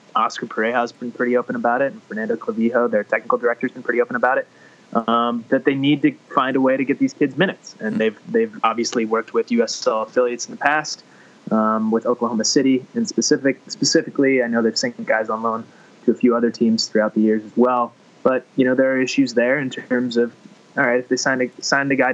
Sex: male